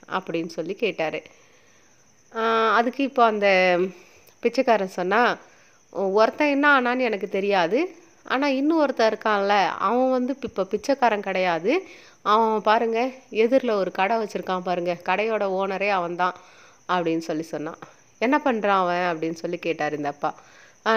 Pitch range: 175-230 Hz